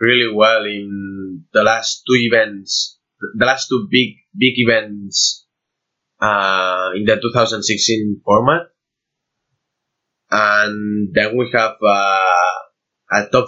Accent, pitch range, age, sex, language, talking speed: Spanish, 105-130 Hz, 20-39, male, English, 120 wpm